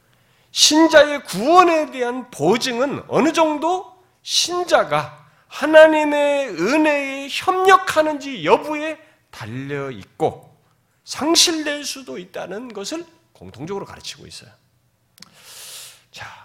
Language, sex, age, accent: Korean, male, 40-59, native